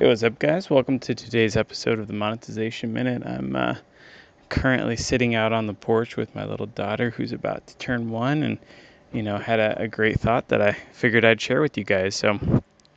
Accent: American